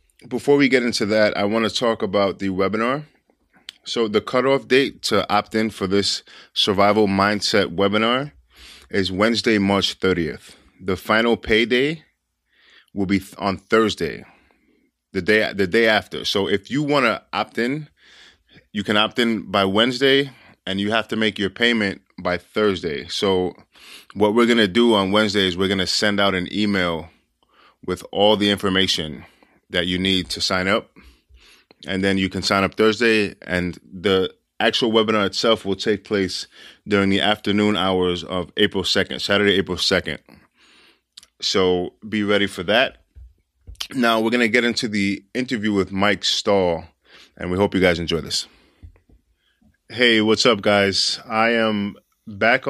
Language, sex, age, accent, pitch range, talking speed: English, male, 20-39, American, 95-110 Hz, 165 wpm